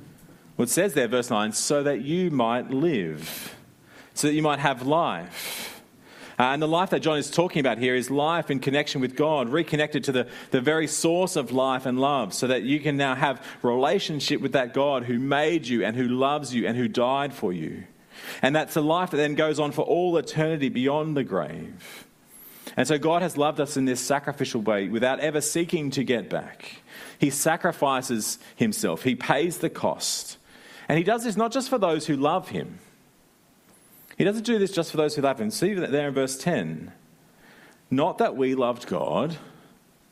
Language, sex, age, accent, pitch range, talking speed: English, male, 30-49, Australian, 125-155 Hz, 195 wpm